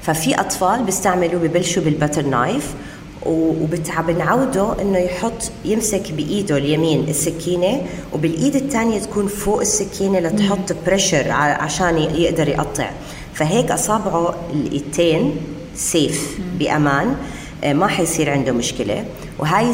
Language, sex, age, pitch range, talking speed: Arabic, female, 30-49, 145-185 Hz, 105 wpm